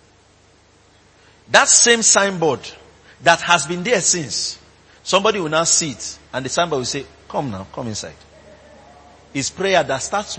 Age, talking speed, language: 50-69, 150 wpm, English